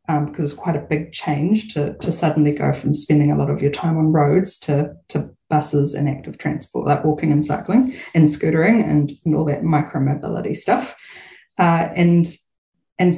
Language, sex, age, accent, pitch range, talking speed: English, female, 20-39, Australian, 150-180 Hz, 190 wpm